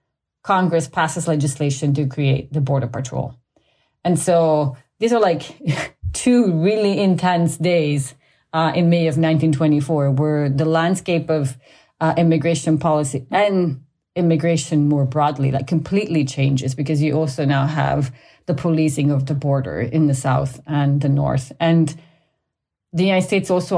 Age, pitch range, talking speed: 30-49, 140-170 Hz, 145 wpm